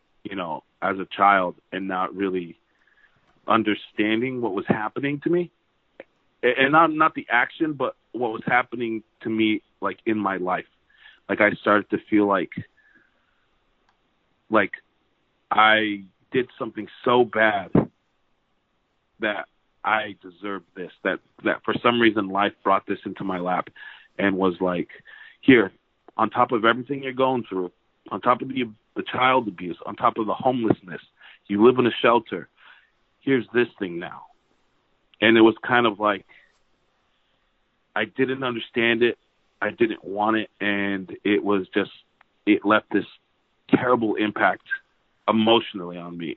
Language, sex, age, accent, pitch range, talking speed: English, male, 30-49, American, 100-120 Hz, 150 wpm